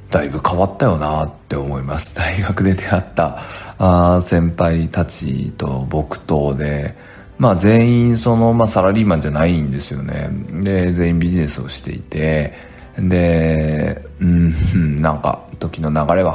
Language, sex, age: Japanese, male, 40-59